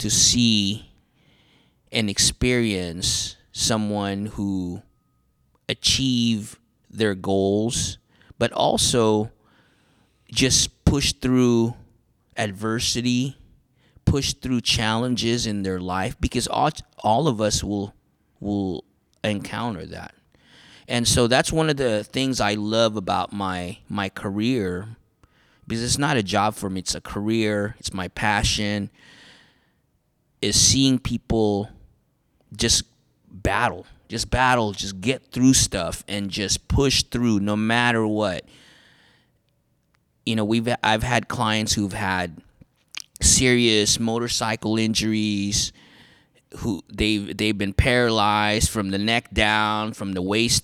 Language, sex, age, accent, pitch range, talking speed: English, male, 30-49, American, 100-115 Hz, 115 wpm